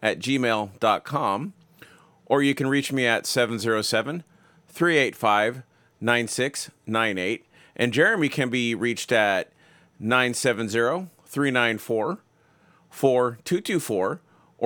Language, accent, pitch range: English, American, 115-140 Hz